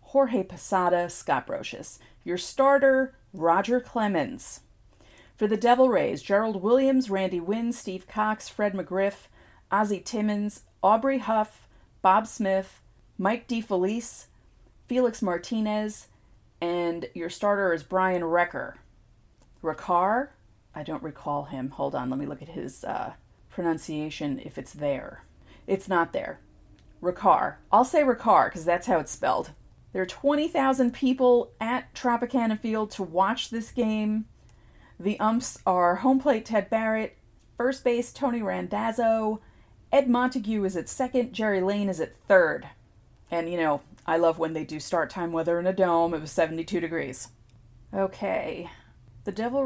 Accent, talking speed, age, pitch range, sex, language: American, 145 wpm, 40-59, 165-230 Hz, female, English